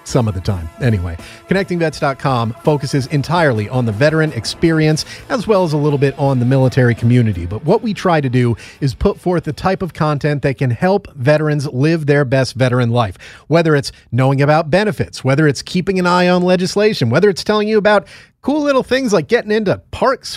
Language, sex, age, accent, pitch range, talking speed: English, male, 40-59, American, 125-175 Hz, 200 wpm